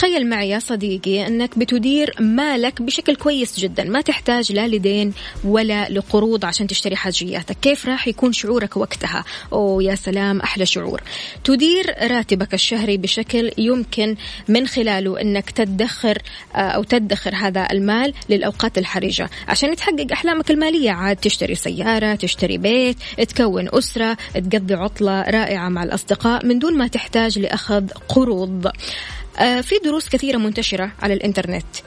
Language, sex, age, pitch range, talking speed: Arabic, female, 20-39, 200-240 Hz, 135 wpm